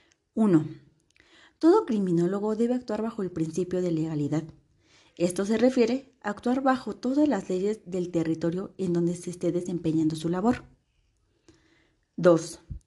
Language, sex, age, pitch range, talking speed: Spanish, female, 30-49, 170-225 Hz, 135 wpm